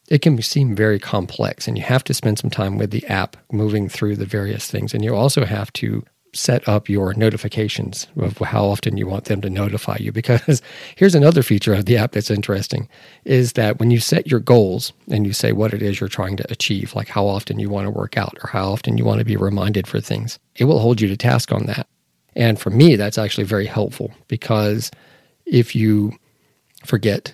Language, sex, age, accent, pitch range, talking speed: English, male, 40-59, American, 100-120 Hz, 220 wpm